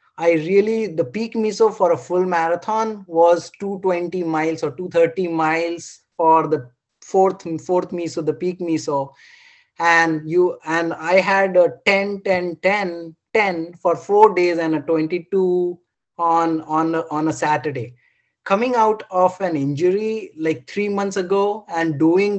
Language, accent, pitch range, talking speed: English, Indian, 165-205 Hz, 155 wpm